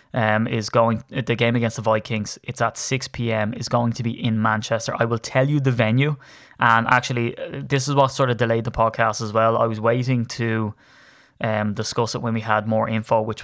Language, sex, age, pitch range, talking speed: English, male, 20-39, 110-130 Hz, 220 wpm